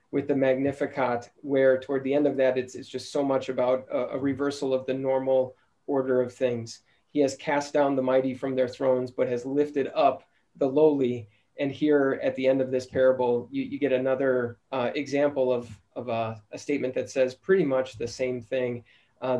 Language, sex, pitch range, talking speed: English, male, 130-145 Hz, 205 wpm